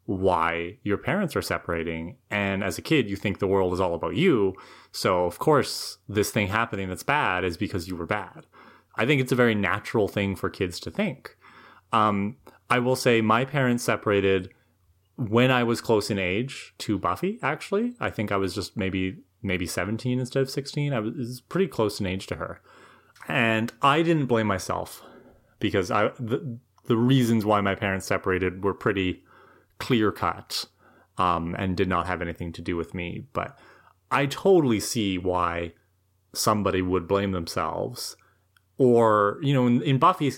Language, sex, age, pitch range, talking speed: English, male, 30-49, 95-125 Hz, 175 wpm